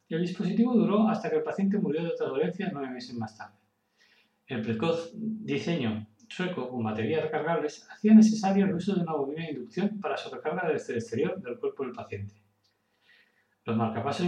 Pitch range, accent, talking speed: 130-205 Hz, Spanish, 180 wpm